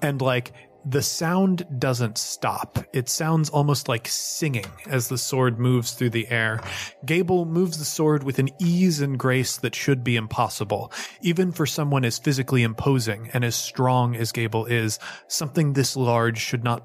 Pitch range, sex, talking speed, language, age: 115-140 Hz, male, 170 wpm, English, 30-49